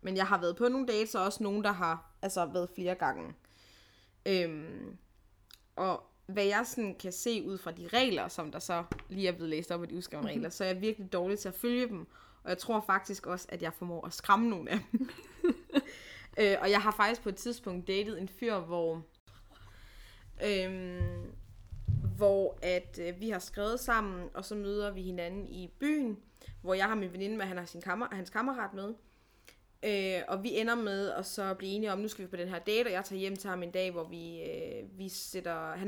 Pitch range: 175-215 Hz